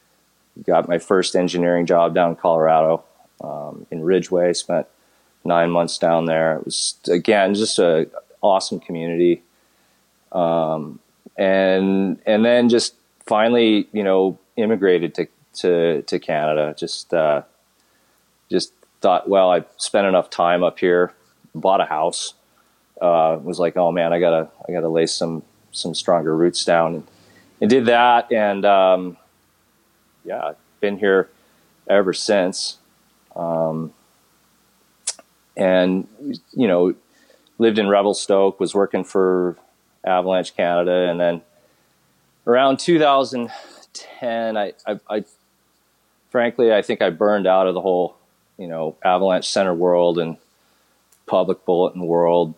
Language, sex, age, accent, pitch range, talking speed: English, male, 30-49, American, 85-95 Hz, 130 wpm